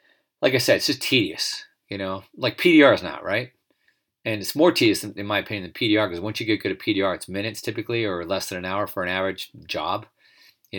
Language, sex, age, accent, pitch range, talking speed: English, male, 40-59, American, 95-125 Hz, 240 wpm